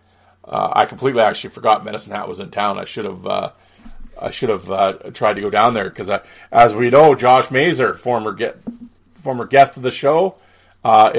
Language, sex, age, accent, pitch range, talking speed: English, male, 40-59, American, 100-145 Hz, 200 wpm